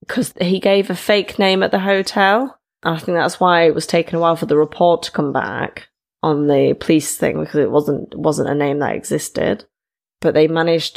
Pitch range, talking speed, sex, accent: 155-175 Hz, 215 wpm, female, British